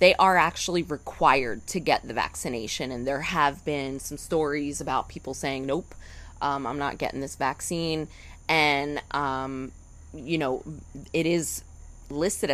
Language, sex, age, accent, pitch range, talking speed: English, female, 20-39, American, 135-165 Hz, 150 wpm